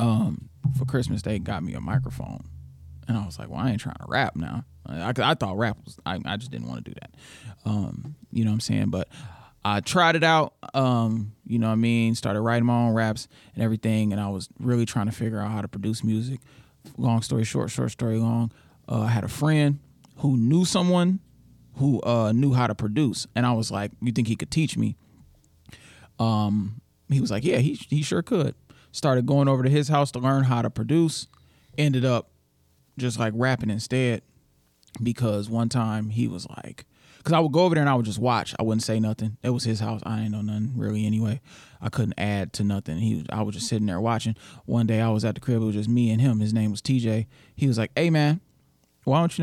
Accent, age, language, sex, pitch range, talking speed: American, 20-39, English, male, 105-130 Hz, 235 wpm